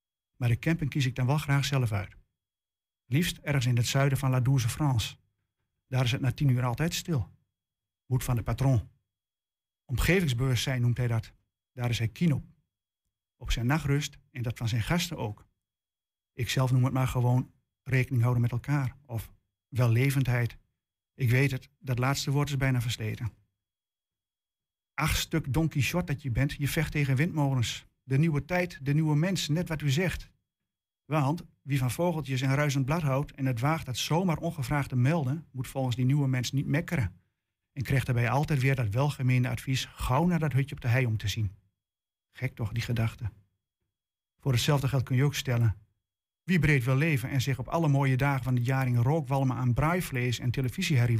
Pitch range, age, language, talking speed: 115-145 Hz, 50-69, Dutch, 185 wpm